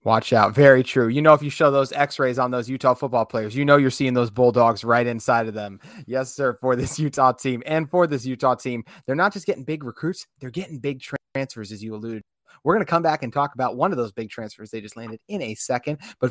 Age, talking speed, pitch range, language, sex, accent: 30-49, 260 wpm, 125-160 Hz, English, male, American